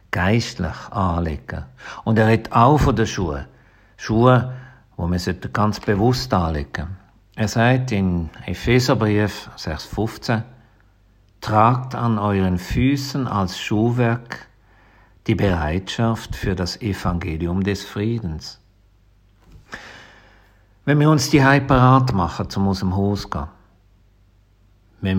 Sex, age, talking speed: male, 50-69, 115 wpm